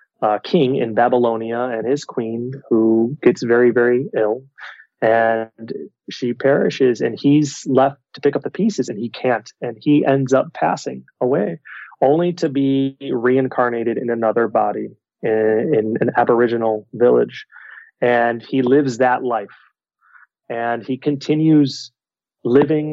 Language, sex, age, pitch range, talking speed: English, male, 30-49, 115-135 Hz, 140 wpm